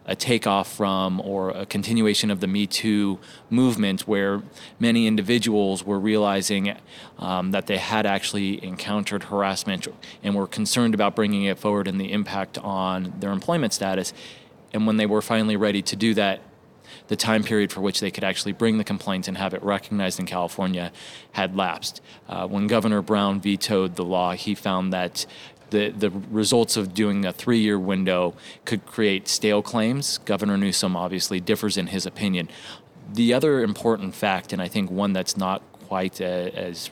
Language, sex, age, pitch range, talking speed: English, male, 30-49, 95-110 Hz, 170 wpm